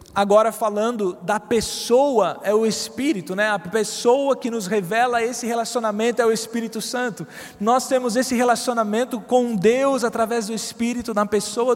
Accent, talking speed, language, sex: Brazilian, 155 wpm, Portuguese, male